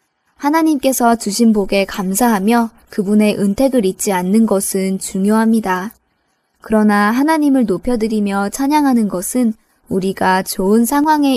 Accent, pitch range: native, 200-245 Hz